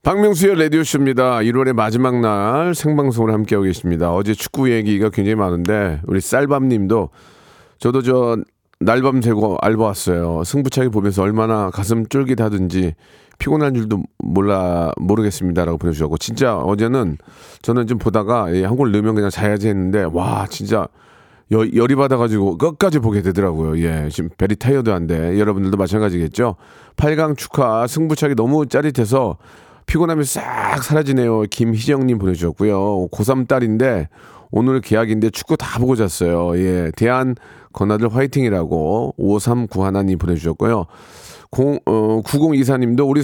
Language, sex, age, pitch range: Korean, male, 40-59, 95-130 Hz